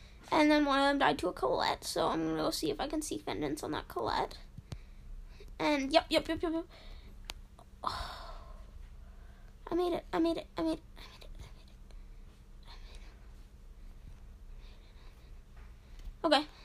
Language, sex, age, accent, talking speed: English, female, 10-29, American, 175 wpm